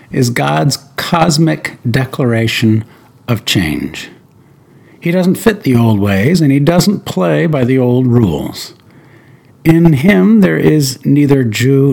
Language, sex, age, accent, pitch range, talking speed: English, male, 60-79, American, 120-155 Hz, 130 wpm